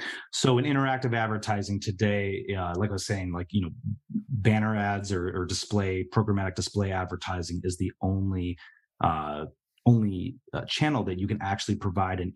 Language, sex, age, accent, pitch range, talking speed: English, male, 30-49, American, 85-105 Hz, 165 wpm